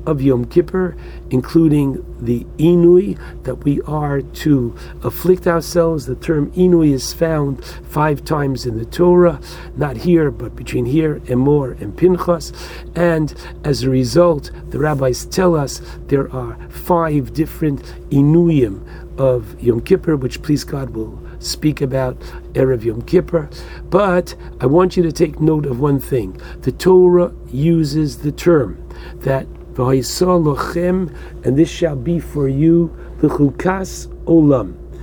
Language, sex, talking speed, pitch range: English, male, 140 wpm, 130-170 Hz